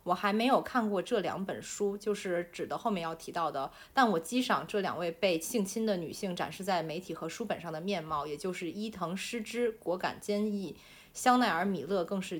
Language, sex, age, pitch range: Chinese, female, 30-49, 165-215 Hz